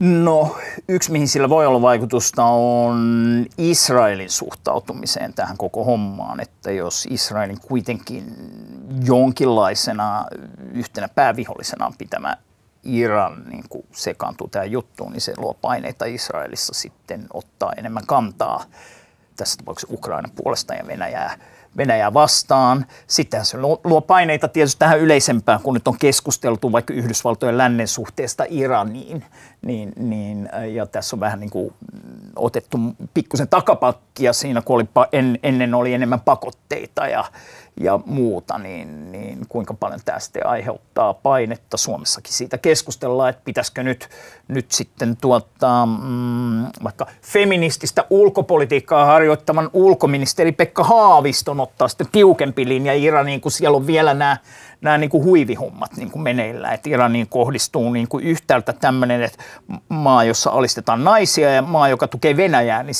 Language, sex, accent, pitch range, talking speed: Finnish, male, native, 120-155 Hz, 130 wpm